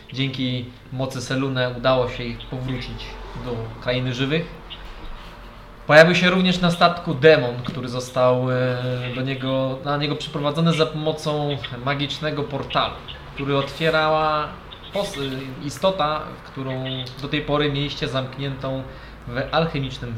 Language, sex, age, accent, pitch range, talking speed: Polish, male, 20-39, native, 120-145 Hz, 115 wpm